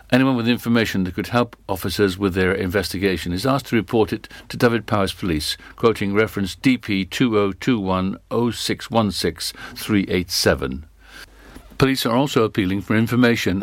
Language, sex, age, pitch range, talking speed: English, male, 60-79, 100-120 Hz, 125 wpm